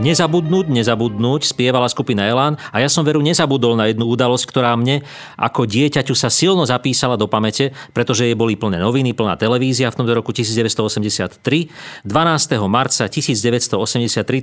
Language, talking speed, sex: Slovak, 150 wpm, male